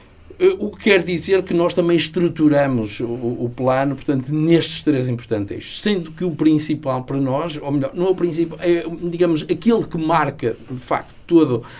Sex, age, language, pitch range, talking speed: male, 50-69, Portuguese, 125-165 Hz, 185 wpm